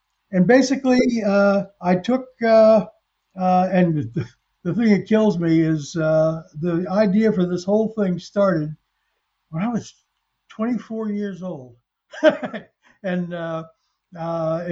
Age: 60-79